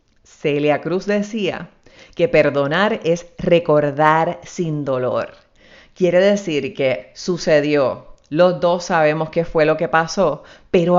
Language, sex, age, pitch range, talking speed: Spanish, female, 30-49, 150-195 Hz, 120 wpm